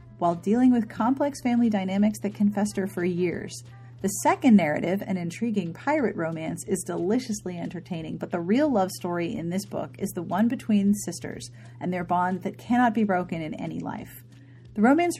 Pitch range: 165-235 Hz